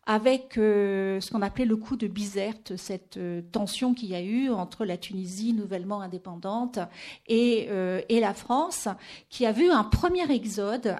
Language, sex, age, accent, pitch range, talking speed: French, female, 50-69, French, 200-245 Hz, 175 wpm